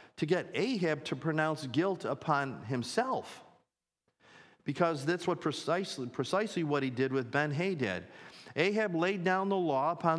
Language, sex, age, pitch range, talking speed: English, male, 50-69, 115-155 Hz, 140 wpm